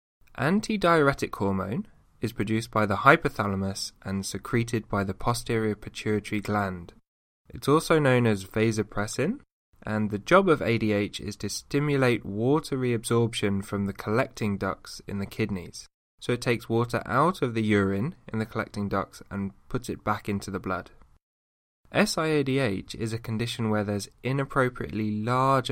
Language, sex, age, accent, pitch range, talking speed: English, male, 10-29, British, 100-120 Hz, 145 wpm